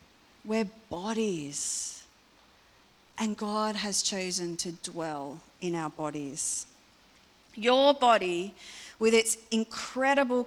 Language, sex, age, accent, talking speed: English, female, 40-59, Australian, 90 wpm